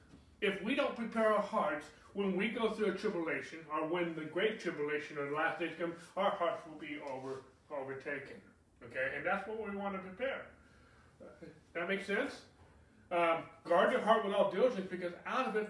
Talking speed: 190 wpm